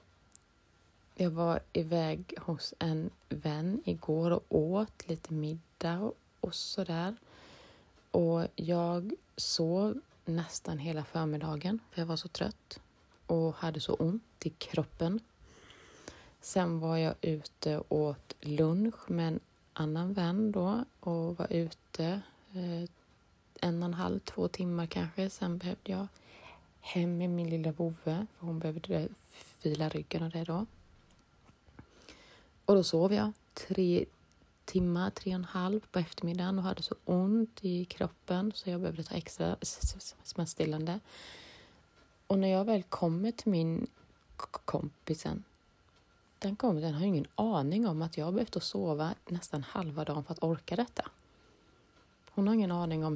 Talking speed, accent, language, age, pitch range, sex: 140 wpm, Swedish, English, 20-39, 160-190 Hz, female